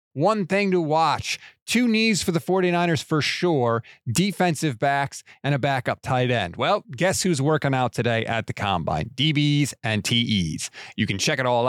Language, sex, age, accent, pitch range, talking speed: English, male, 30-49, American, 120-155 Hz, 180 wpm